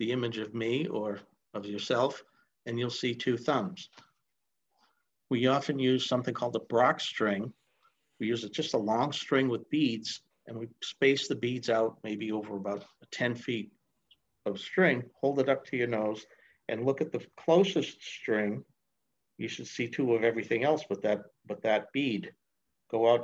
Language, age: English, 60-79